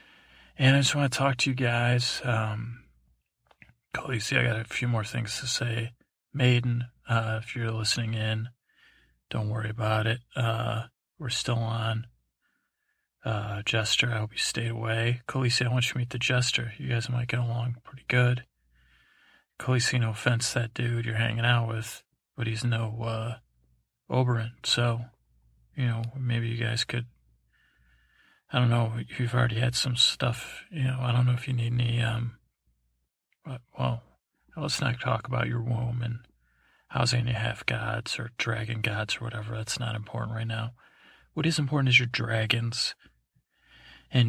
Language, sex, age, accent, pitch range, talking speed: English, male, 40-59, American, 110-120 Hz, 170 wpm